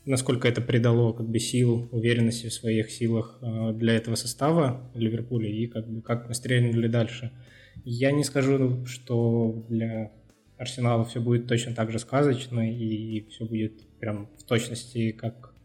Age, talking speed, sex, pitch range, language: 20-39, 155 wpm, male, 115-125 Hz, Russian